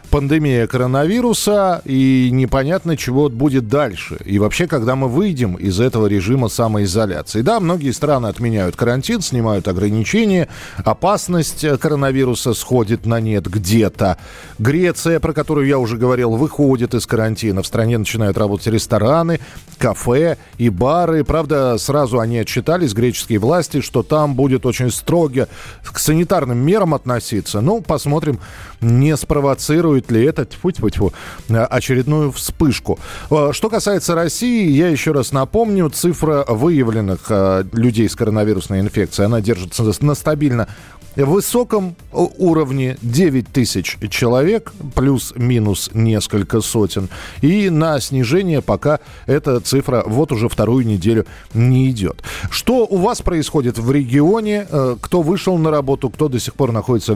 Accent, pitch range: native, 110-155 Hz